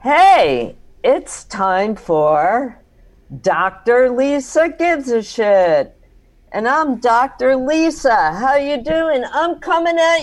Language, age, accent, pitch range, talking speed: English, 50-69, American, 180-255 Hz, 110 wpm